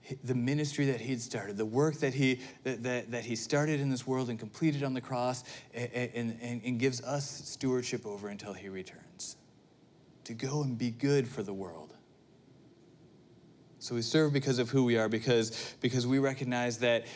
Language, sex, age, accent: English, male, 30-49, American